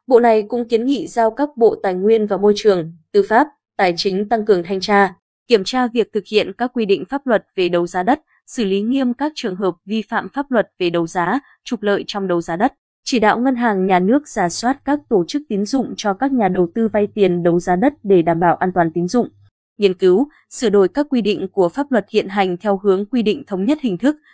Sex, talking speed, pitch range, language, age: female, 255 wpm, 185-240 Hz, Vietnamese, 20-39